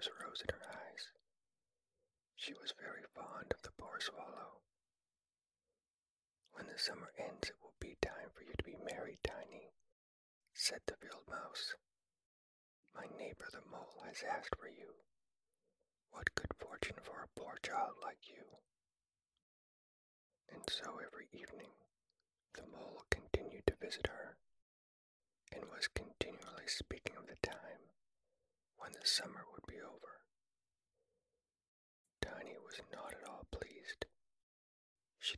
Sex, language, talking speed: male, English, 130 wpm